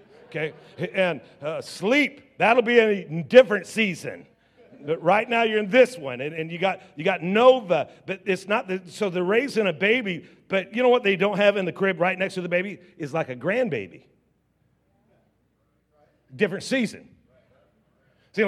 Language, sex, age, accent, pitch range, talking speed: English, male, 50-69, American, 185-240 Hz, 175 wpm